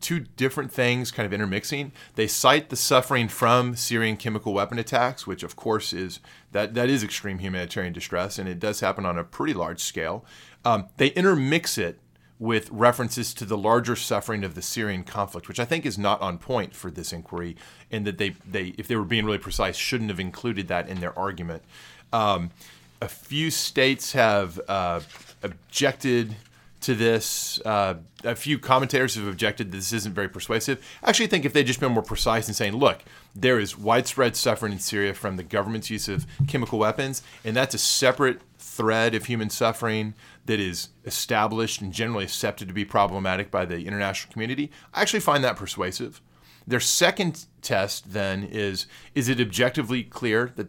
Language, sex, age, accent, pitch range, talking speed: English, male, 30-49, American, 100-125 Hz, 185 wpm